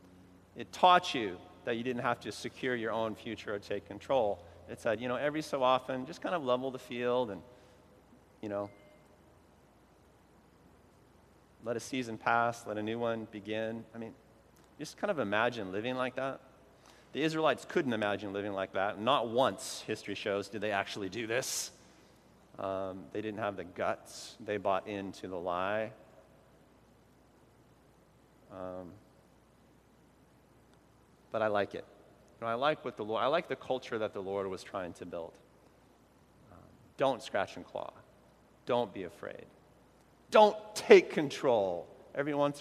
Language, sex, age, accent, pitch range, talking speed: English, male, 30-49, American, 100-125 Hz, 155 wpm